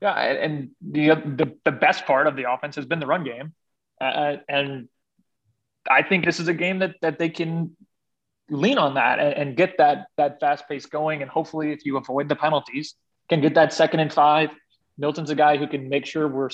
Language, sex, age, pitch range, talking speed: English, male, 20-39, 140-170 Hz, 215 wpm